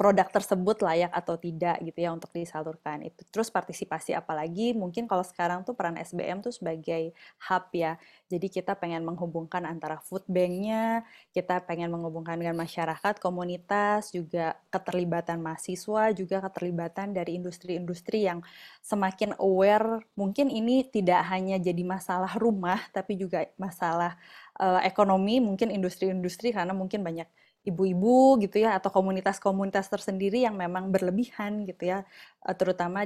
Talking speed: 135 wpm